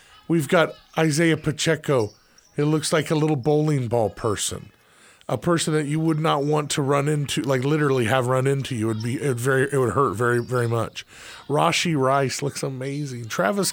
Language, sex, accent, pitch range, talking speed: English, male, American, 110-150 Hz, 170 wpm